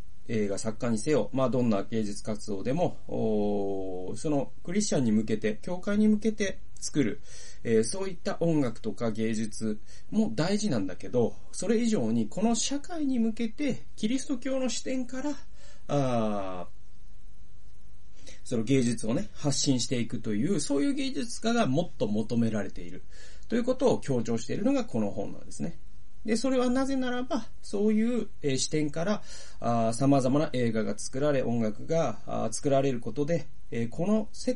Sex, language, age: male, Japanese, 30-49